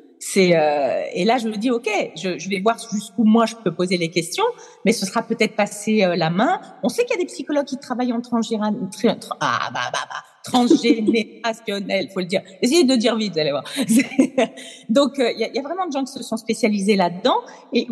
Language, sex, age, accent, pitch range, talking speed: French, female, 40-59, French, 185-270 Hz, 235 wpm